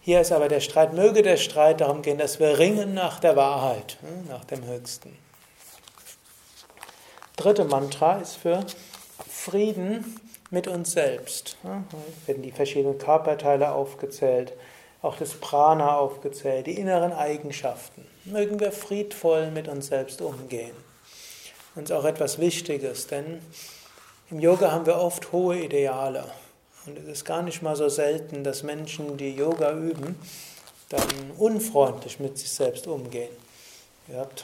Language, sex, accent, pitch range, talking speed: German, male, German, 135-170 Hz, 140 wpm